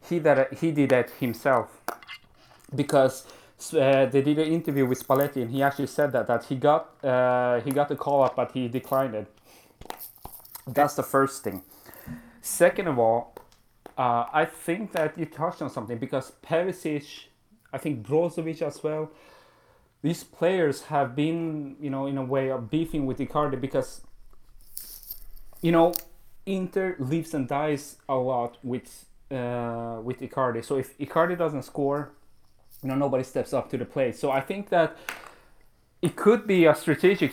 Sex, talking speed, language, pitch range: male, 165 wpm, English, 130-160 Hz